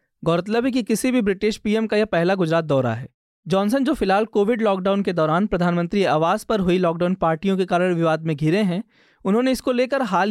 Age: 20-39